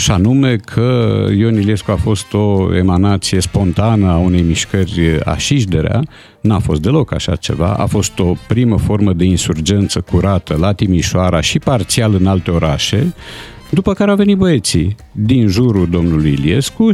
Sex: male